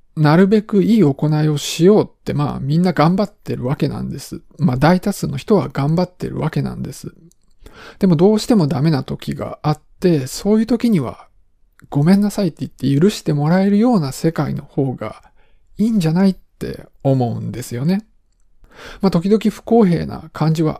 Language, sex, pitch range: Japanese, male, 145-205 Hz